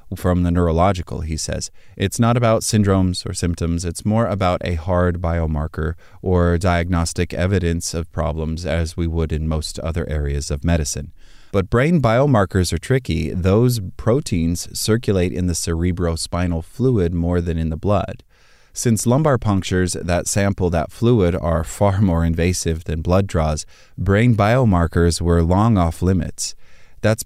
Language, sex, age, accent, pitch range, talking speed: English, male, 30-49, American, 85-100 Hz, 150 wpm